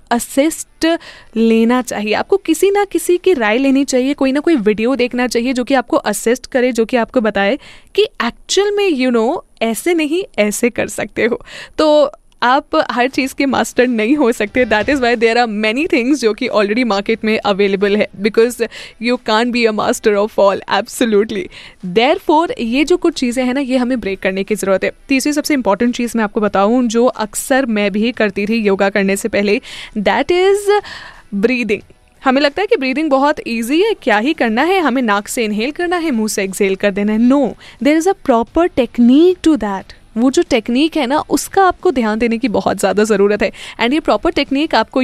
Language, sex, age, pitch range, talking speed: Hindi, female, 10-29, 215-285 Hz, 210 wpm